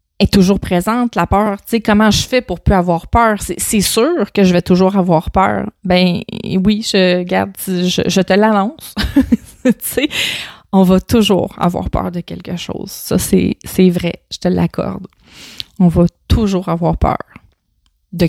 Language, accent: French, Canadian